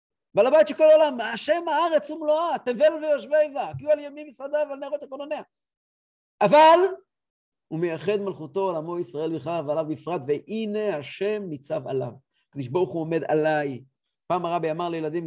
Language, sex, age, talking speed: English, male, 50-69, 155 wpm